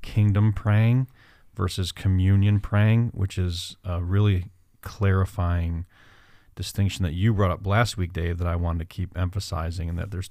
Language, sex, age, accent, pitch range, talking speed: English, male, 40-59, American, 90-100 Hz, 155 wpm